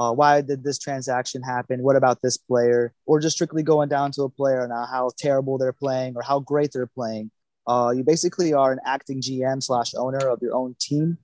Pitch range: 125-145 Hz